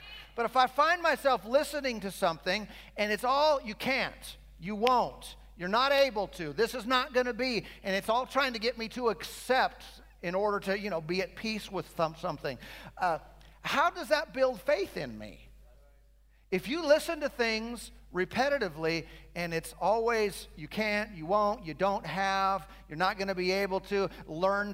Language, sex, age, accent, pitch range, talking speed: English, male, 50-69, American, 155-205 Hz, 185 wpm